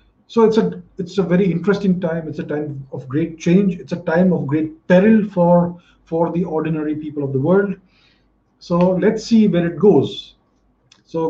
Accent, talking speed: Indian, 185 wpm